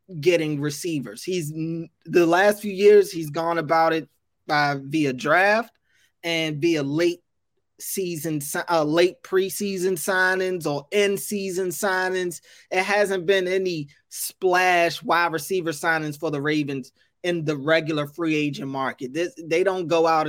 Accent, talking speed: American, 140 wpm